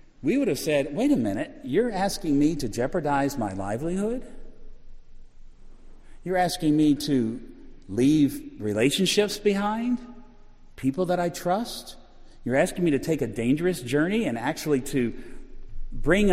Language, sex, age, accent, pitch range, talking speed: English, male, 50-69, American, 110-175 Hz, 135 wpm